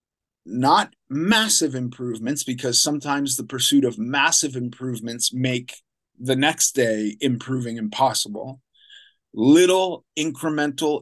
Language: English